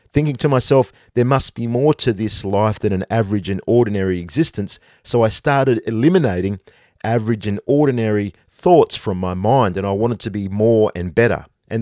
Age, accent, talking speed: 50-69, Australian, 185 wpm